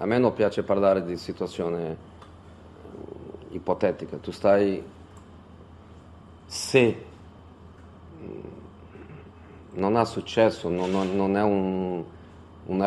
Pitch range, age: 90-105 Hz, 40-59